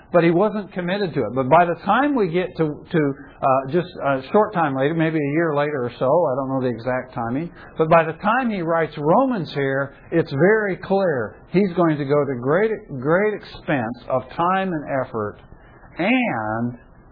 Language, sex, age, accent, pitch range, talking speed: English, male, 60-79, American, 120-175 Hz, 195 wpm